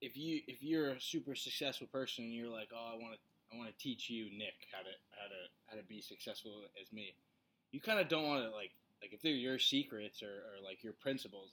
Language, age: English, 20-39